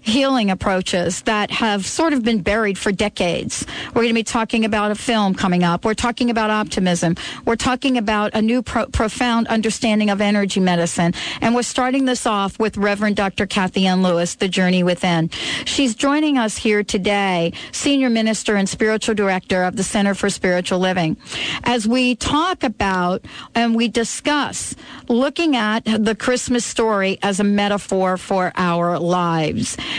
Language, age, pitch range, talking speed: English, 50-69, 190-235 Hz, 165 wpm